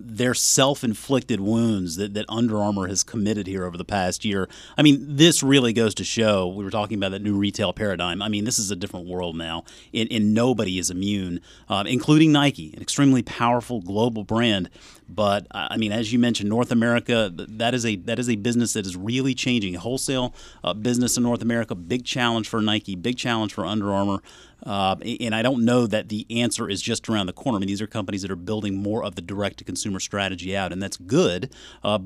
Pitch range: 95-120 Hz